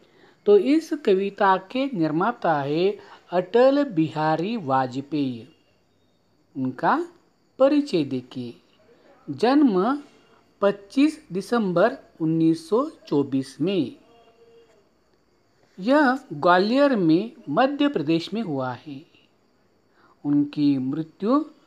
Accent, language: native, Marathi